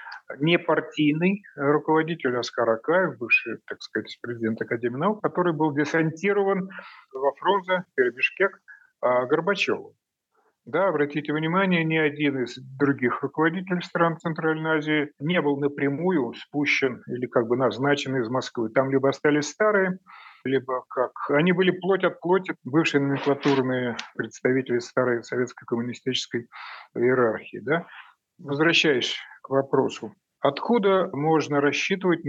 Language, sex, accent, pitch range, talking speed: Russian, male, native, 130-175 Hz, 115 wpm